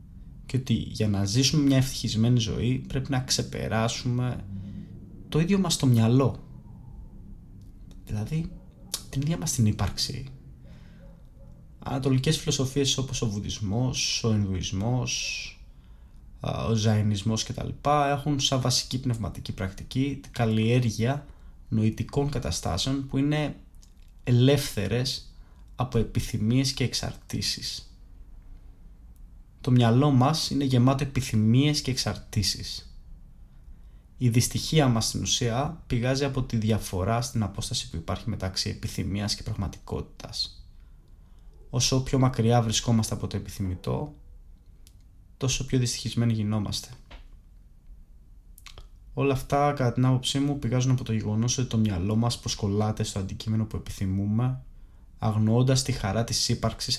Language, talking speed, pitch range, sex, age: Greek, 115 wpm, 95-130 Hz, male, 20-39